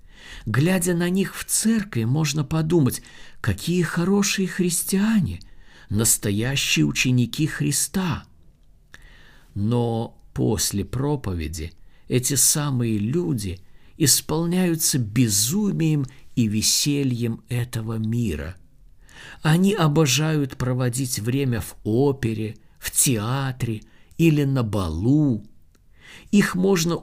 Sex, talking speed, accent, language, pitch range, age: male, 85 wpm, native, Russian, 100-155 Hz, 50-69